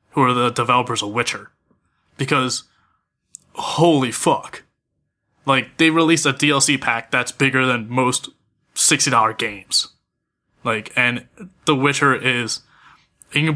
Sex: male